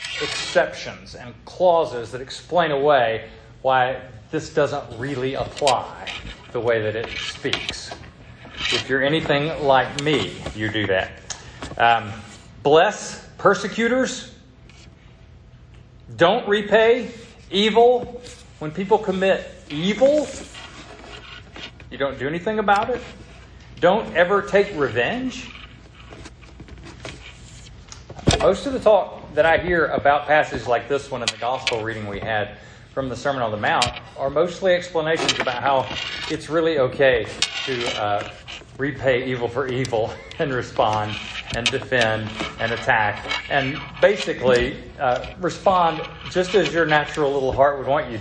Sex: male